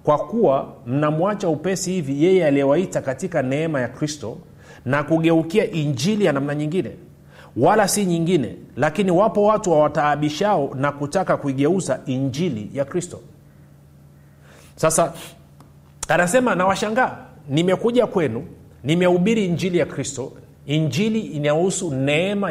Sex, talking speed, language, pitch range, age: male, 115 wpm, Swahili, 140-180 Hz, 30-49